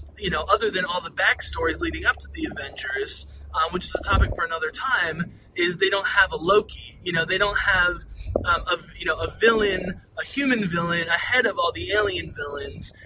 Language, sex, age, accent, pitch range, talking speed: English, male, 20-39, American, 165-225 Hz, 210 wpm